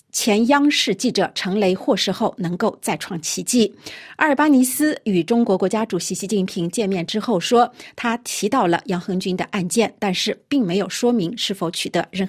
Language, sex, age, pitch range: Chinese, female, 50-69, 185-235 Hz